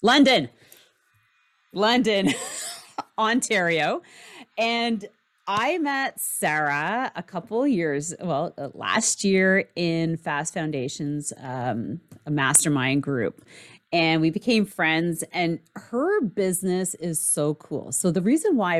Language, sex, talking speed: English, female, 105 wpm